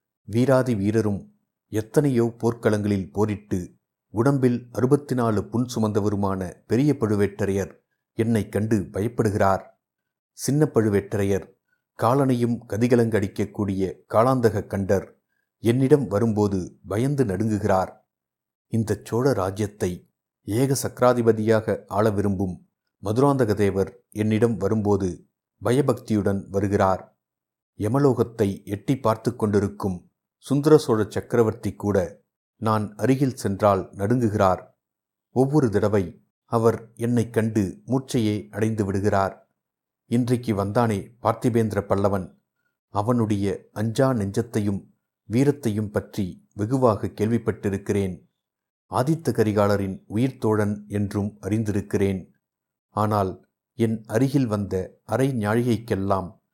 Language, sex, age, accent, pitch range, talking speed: Tamil, male, 50-69, native, 100-120 Hz, 80 wpm